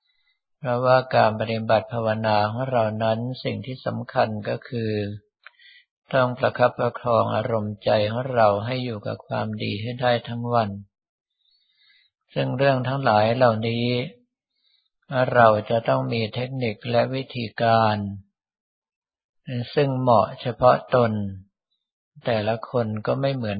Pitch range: 110-125 Hz